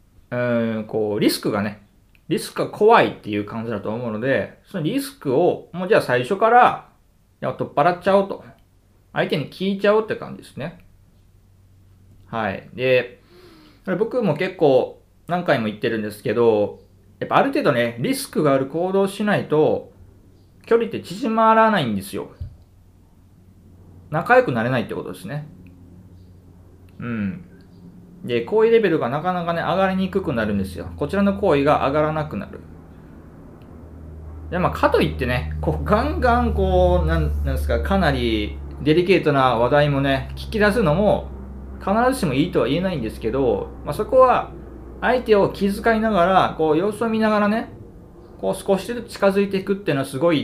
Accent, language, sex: native, Japanese, male